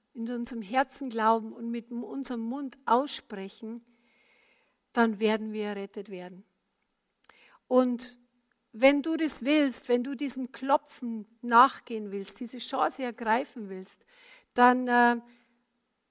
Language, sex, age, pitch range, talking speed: German, female, 50-69, 230-265 Hz, 115 wpm